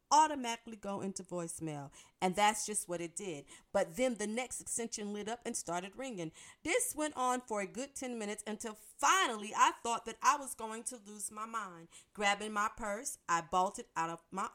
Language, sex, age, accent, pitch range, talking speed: English, female, 40-59, American, 165-225 Hz, 200 wpm